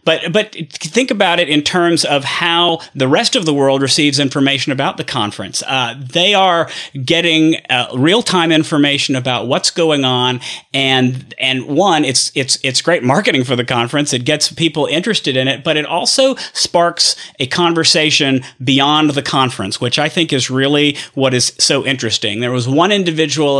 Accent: American